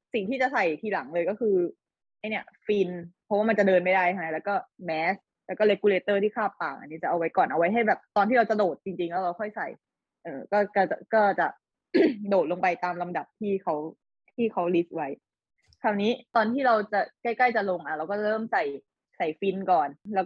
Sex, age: female, 20-39